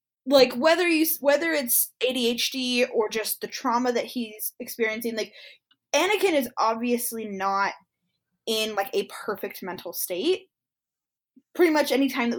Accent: American